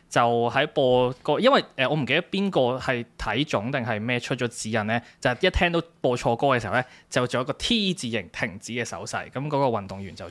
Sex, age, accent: male, 20-39, native